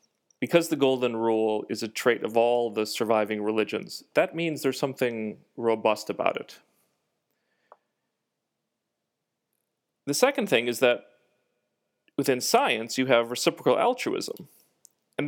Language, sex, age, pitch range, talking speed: English, male, 40-59, 115-165 Hz, 120 wpm